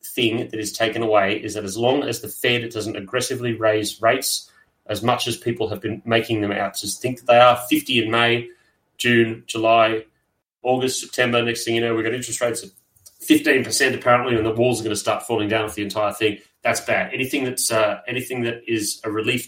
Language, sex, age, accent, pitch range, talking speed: English, male, 30-49, Australian, 110-130 Hz, 220 wpm